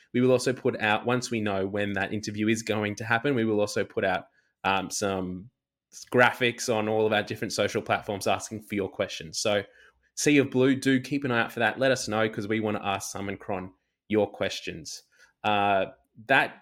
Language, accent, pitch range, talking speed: English, Australian, 105-135 Hz, 215 wpm